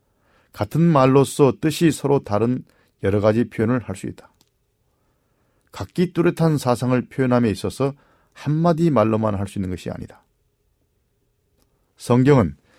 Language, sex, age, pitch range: Korean, male, 40-59, 105-140 Hz